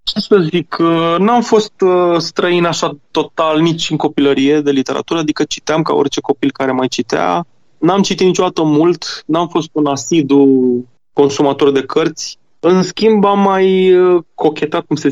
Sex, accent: male, native